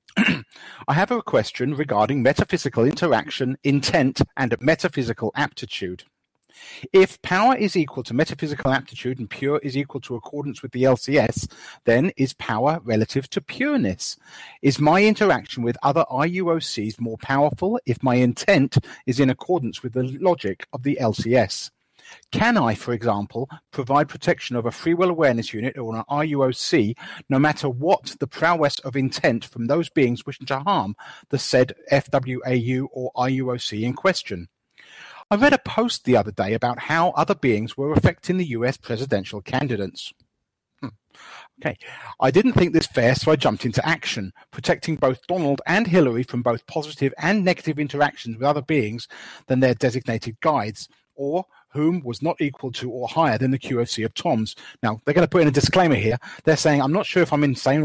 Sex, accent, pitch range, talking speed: male, British, 120-155 Hz, 170 wpm